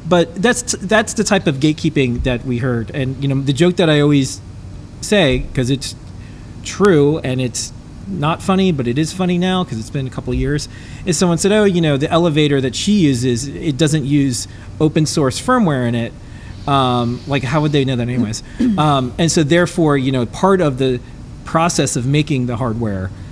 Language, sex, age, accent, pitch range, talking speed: English, male, 30-49, American, 120-165 Hz, 205 wpm